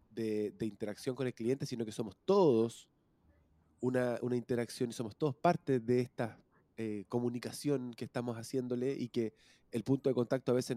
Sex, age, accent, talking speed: male, 20-39, Argentinian, 180 wpm